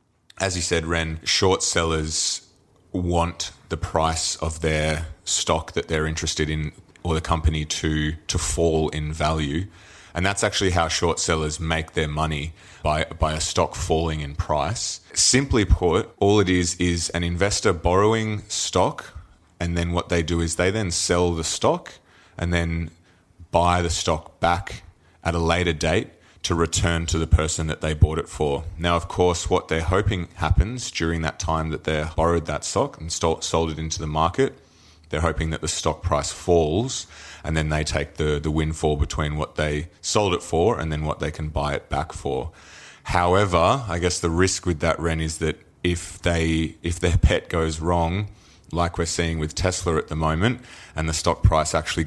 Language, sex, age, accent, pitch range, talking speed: English, male, 30-49, Australian, 80-90 Hz, 190 wpm